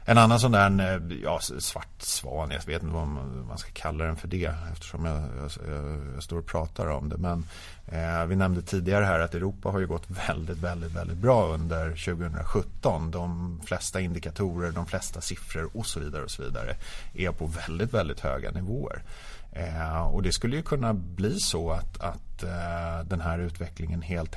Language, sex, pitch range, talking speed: Swedish, male, 80-95 Hz, 185 wpm